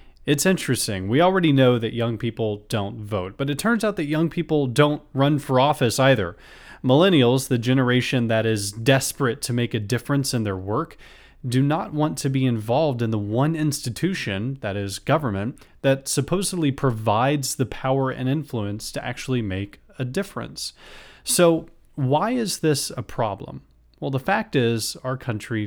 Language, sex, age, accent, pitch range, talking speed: English, male, 30-49, American, 110-140 Hz, 170 wpm